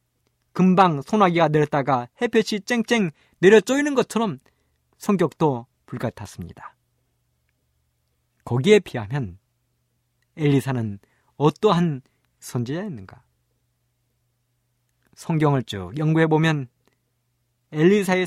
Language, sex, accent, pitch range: Korean, male, native, 120-175 Hz